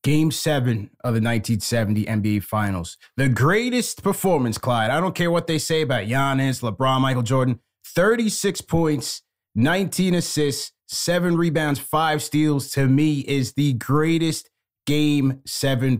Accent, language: American, English